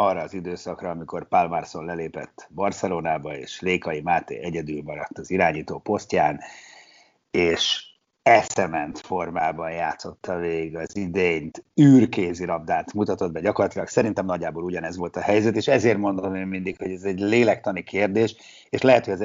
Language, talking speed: Hungarian, 150 wpm